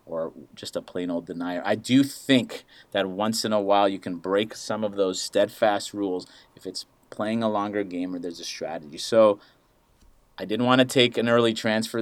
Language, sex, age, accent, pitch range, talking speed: English, male, 30-49, American, 95-115 Hz, 205 wpm